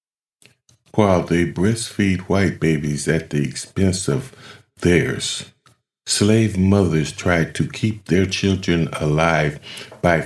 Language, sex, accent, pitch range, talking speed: English, male, American, 80-105 Hz, 110 wpm